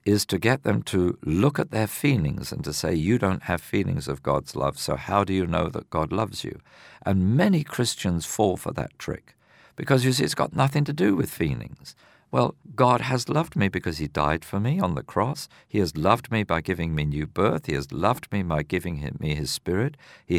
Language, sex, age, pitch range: English, male, 50-69, 85-130 Hz